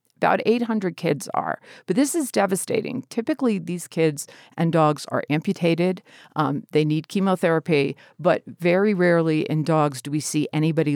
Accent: American